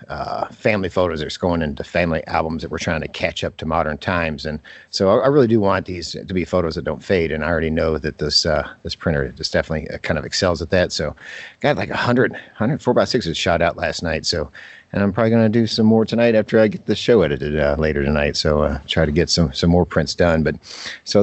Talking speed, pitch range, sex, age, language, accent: 255 wpm, 80-110 Hz, male, 50-69, English, American